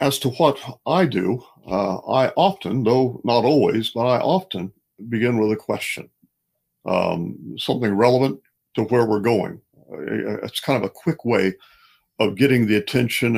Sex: male